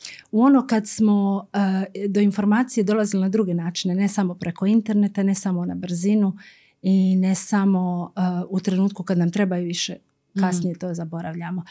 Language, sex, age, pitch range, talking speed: Croatian, female, 40-59, 190-240 Hz, 165 wpm